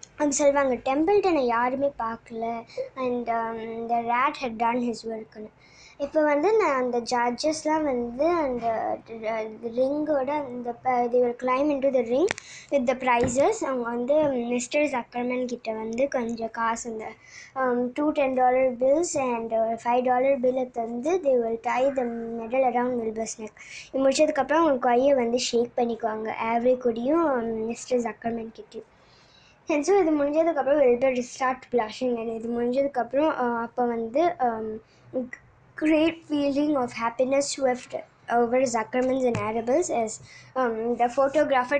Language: Tamil